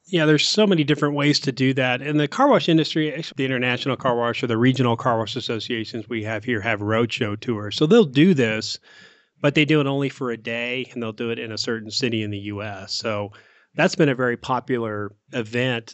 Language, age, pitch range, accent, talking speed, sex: English, 30-49, 110-130 Hz, American, 225 wpm, male